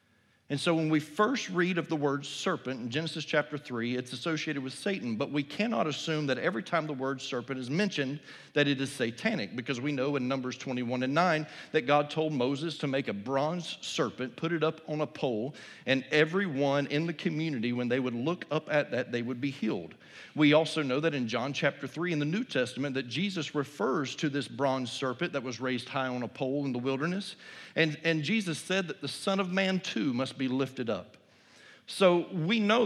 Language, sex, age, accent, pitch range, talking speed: English, male, 40-59, American, 135-170 Hz, 215 wpm